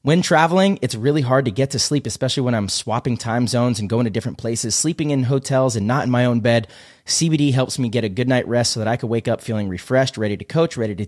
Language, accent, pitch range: English, American, 115-145 Hz